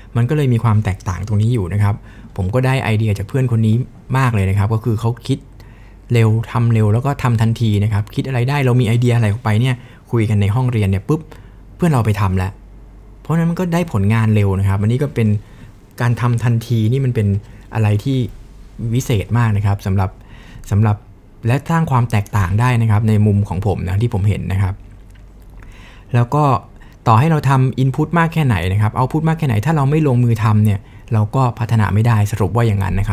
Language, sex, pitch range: Thai, male, 105-125 Hz